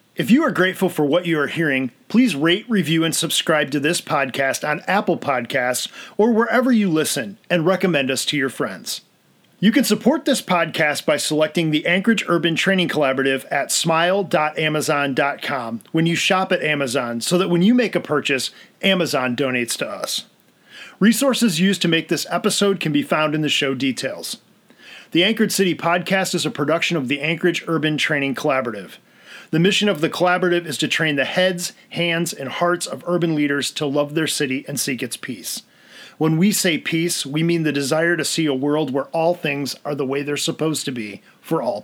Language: English